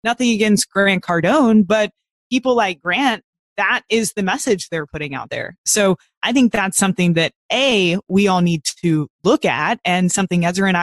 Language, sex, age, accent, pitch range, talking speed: English, female, 20-39, American, 175-220 Hz, 185 wpm